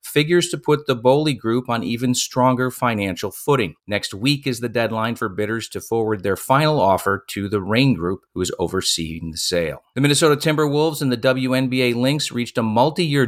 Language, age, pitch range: English, 40-59, 105-135 Hz